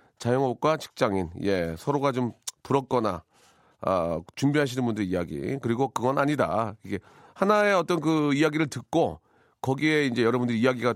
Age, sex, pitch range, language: 40-59, male, 125-180 Hz, Korean